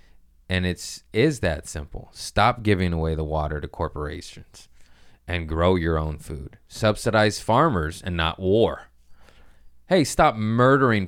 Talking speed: 135 wpm